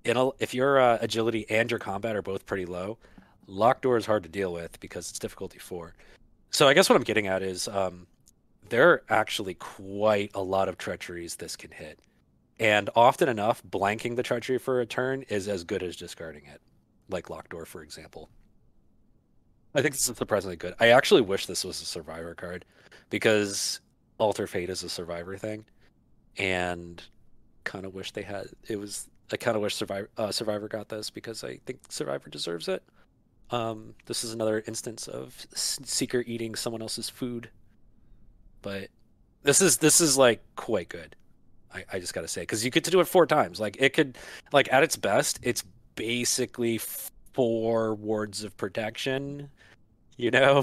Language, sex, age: English, male, 30-49